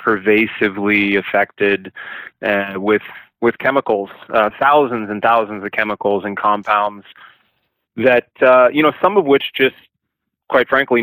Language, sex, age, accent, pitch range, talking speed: English, male, 20-39, American, 105-120 Hz, 130 wpm